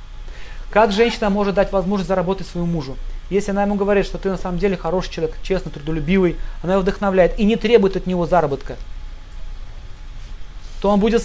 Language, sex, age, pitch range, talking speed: Russian, male, 30-49, 125-200 Hz, 175 wpm